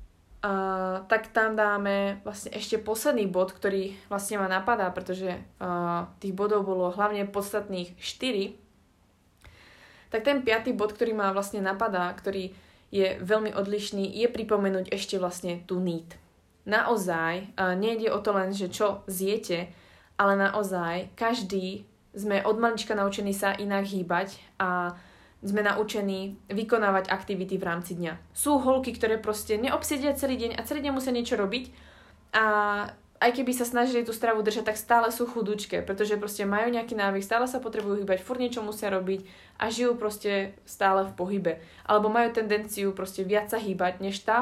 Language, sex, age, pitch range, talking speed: Slovak, female, 20-39, 190-220 Hz, 160 wpm